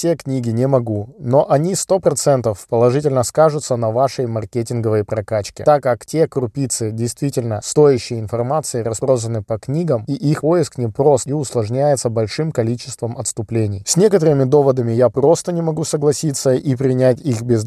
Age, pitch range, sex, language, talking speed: 20-39, 115-150 Hz, male, Russian, 150 wpm